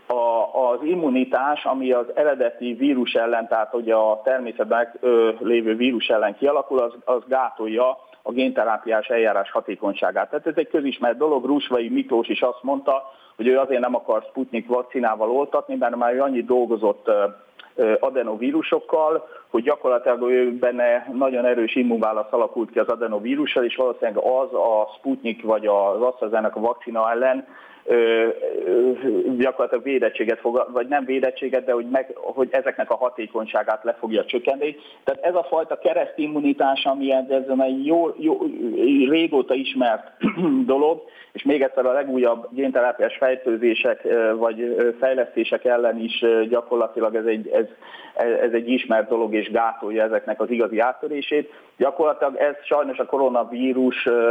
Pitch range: 115-150 Hz